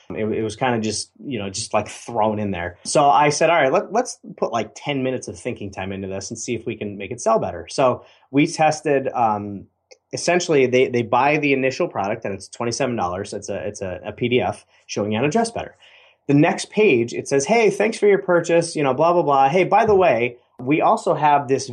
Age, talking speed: 30-49, 240 wpm